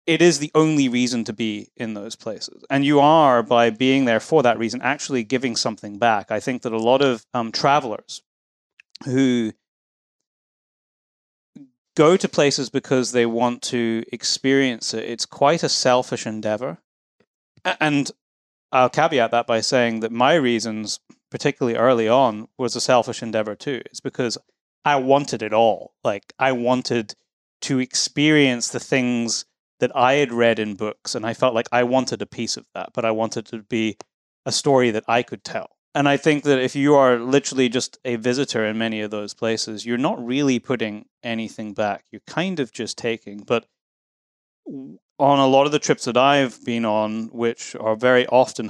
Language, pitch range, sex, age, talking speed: English, 115-135 Hz, male, 30-49, 180 wpm